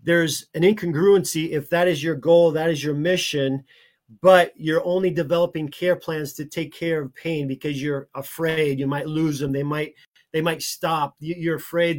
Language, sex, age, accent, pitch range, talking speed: English, male, 40-59, American, 145-175 Hz, 185 wpm